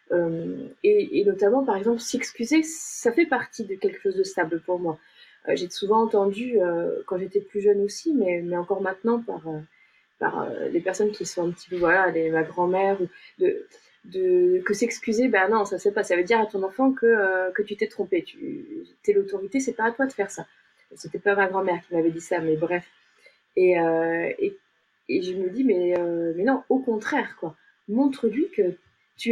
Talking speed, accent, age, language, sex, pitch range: 215 wpm, French, 30-49, French, female, 190-290 Hz